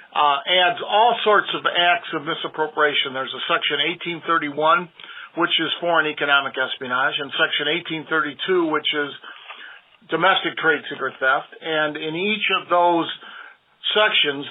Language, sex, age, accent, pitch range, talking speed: English, male, 50-69, American, 150-185 Hz, 130 wpm